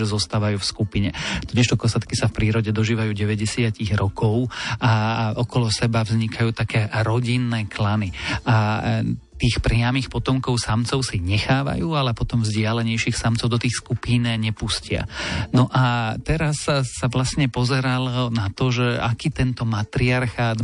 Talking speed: 135 wpm